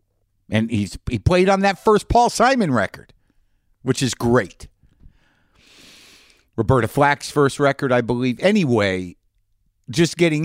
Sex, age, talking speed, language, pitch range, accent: male, 50-69, 125 wpm, English, 100-140 Hz, American